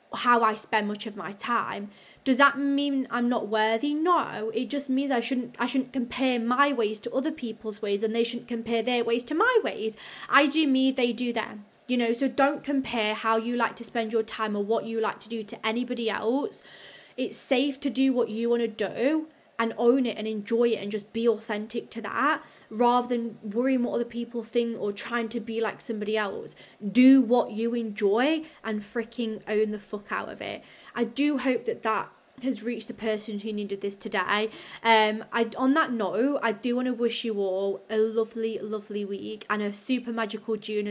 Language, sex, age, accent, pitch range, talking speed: English, female, 20-39, British, 215-245 Hz, 210 wpm